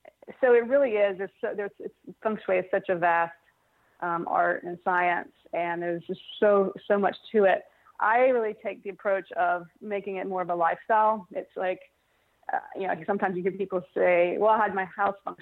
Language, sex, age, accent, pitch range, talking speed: English, female, 30-49, American, 185-215 Hz, 210 wpm